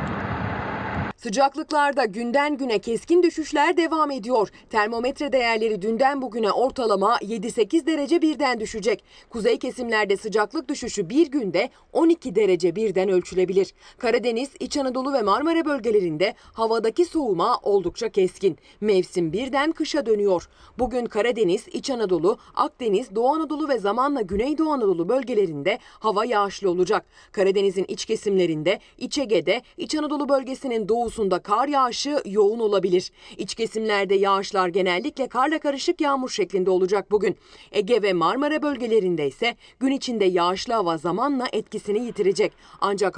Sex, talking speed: female, 125 wpm